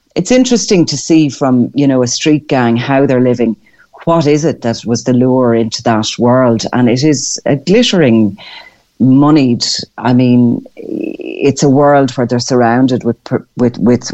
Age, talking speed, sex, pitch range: 40-59, 170 wpm, female, 120-145 Hz